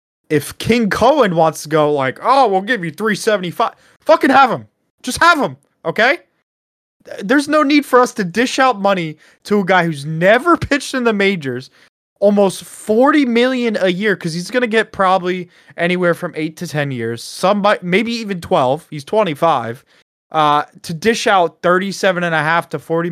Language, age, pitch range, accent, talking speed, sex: English, 20-39, 145-220 Hz, American, 180 wpm, male